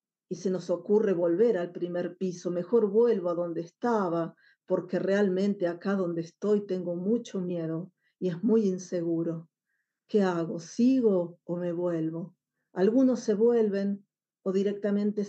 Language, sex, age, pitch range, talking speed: Spanish, female, 40-59, 175-210 Hz, 140 wpm